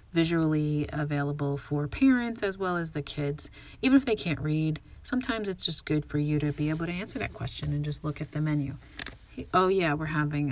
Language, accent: English, American